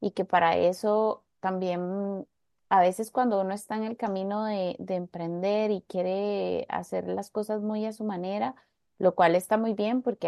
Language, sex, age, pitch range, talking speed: Spanish, female, 30-49, 180-230 Hz, 180 wpm